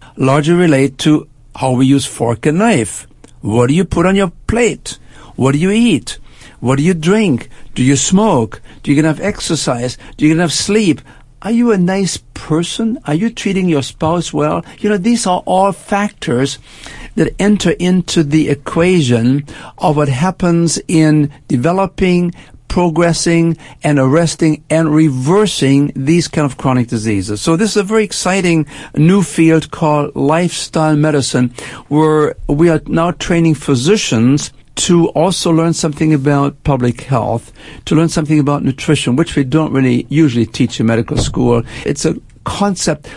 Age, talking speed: 60-79, 155 wpm